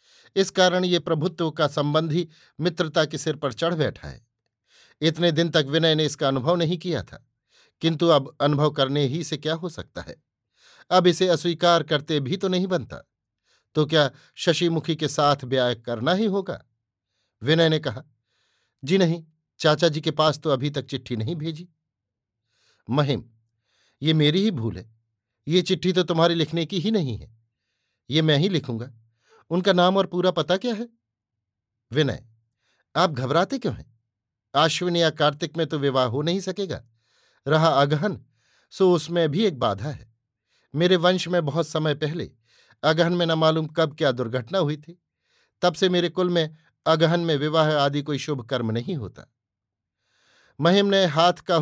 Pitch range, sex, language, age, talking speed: 130-175 Hz, male, Hindi, 50-69, 170 wpm